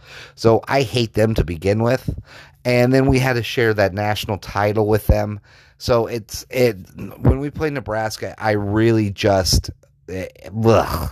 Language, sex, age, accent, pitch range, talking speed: English, male, 30-49, American, 90-110 Hz, 160 wpm